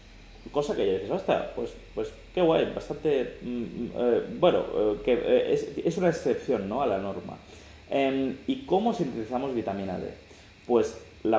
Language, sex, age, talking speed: Spanish, male, 30-49, 165 wpm